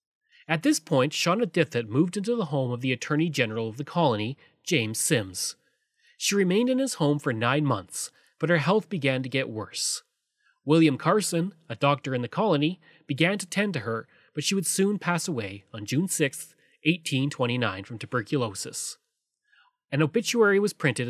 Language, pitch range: English, 125-175 Hz